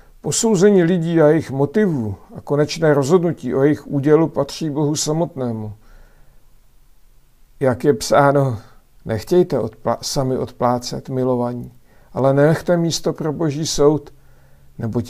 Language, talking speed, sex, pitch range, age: Czech, 115 wpm, male, 115-150 Hz, 50-69